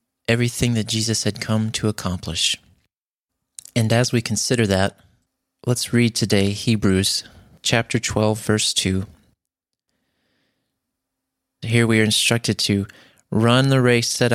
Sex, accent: male, American